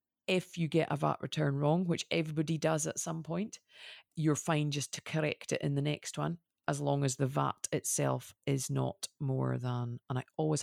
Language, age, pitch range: English, 40-59, 130-165 Hz